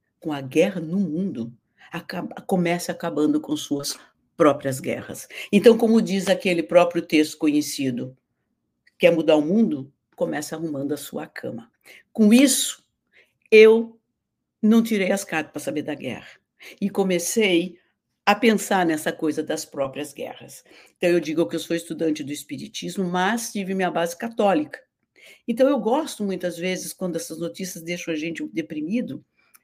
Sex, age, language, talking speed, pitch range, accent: female, 60-79, English, 150 wpm, 155-210 Hz, Brazilian